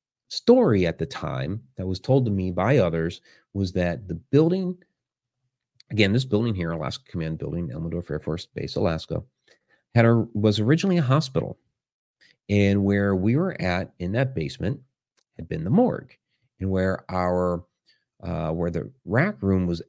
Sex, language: male, English